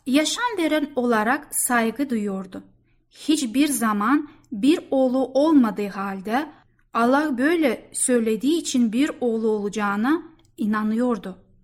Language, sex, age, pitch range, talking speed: Turkish, female, 10-29, 235-300 Hz, 100 wpm